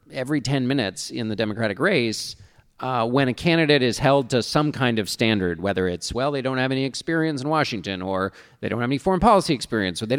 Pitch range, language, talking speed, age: 115-150 Hz, English, 225 wpm, 40-59